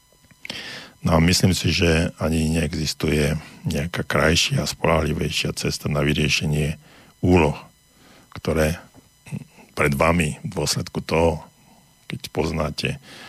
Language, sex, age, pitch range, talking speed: Slovak, male, 50-69, 80-90 Hz, 105 wpm